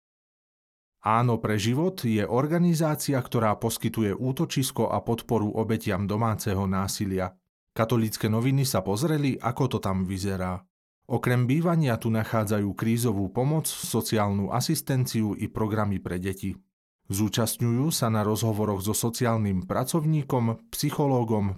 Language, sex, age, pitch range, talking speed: Slovak, male, 40-59, 100-130 Hz, 115 wpm